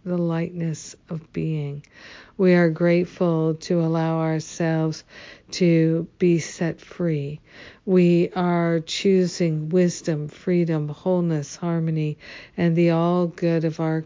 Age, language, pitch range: 50-69, English, 155-175 Hz